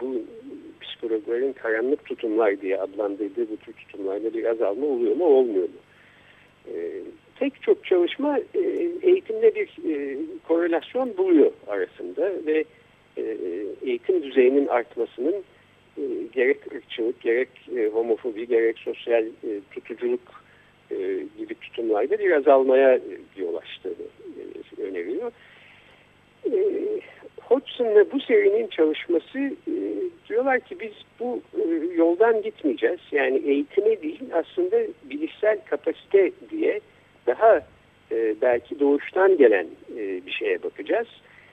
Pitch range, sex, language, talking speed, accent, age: 335-415 Hz, male, Turkish, 100 wpm, native, 50-69